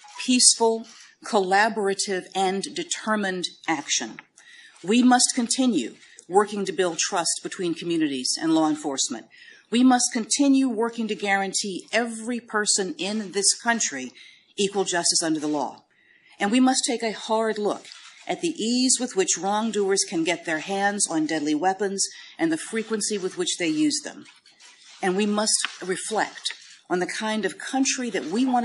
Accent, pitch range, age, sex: American, 180-235 Hz, 50-69, female